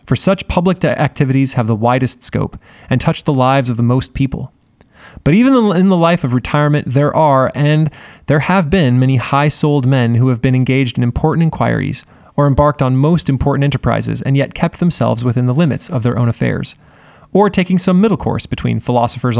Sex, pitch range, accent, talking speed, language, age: male, 125-160 Hz, American, 200 wpm, English, 20-39